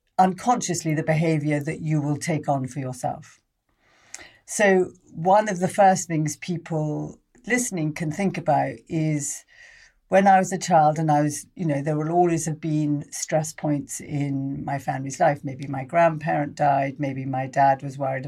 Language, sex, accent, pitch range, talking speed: English, female, British, 150-190 Hz, 170 wpm